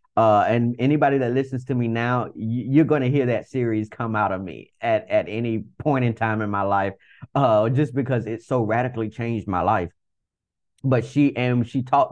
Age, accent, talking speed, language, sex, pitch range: 30-49, American, 210 wpm, English, male, 105-130 Hz